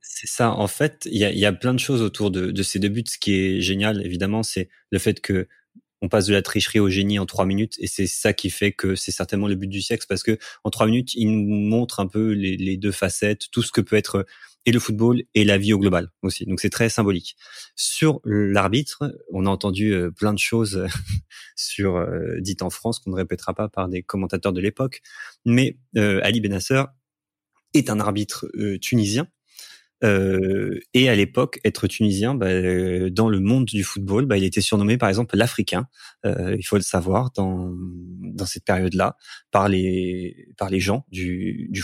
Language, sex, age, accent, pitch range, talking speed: French, male, 30-49, French, 95-115 Hz, 210 wpm